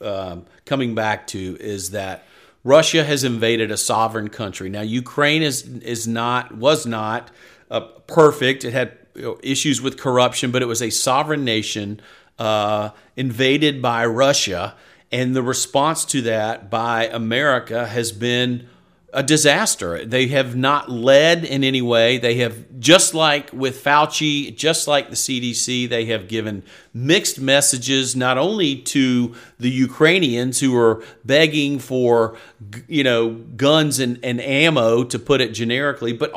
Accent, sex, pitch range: American, male, 115-145 Hz